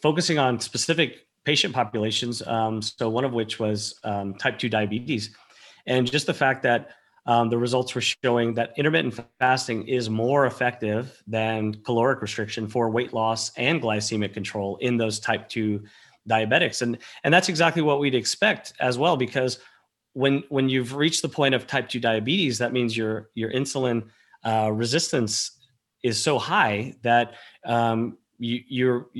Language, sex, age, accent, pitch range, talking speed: English, male, 30-49, American, 110-125 Hz, 160 wpm